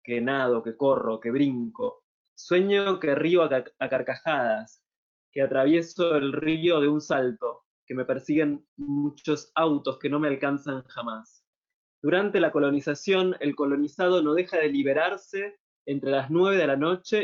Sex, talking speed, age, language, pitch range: male, 155 wpm, 20-39, Spanish, 140-175 Hz